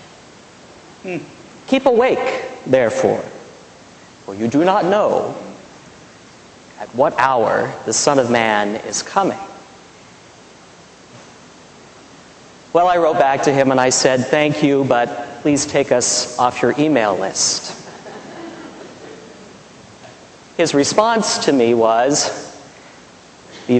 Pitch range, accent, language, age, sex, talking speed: 130-170 Hz, American, English, 40-59, male, 105 wpm